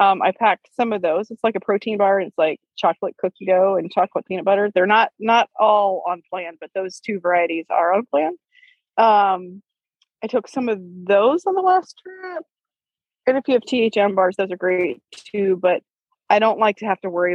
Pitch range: 185-230 Hz